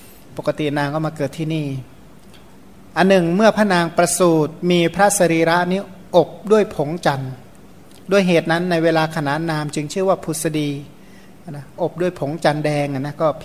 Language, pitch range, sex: Thai, 150-180 Hz, male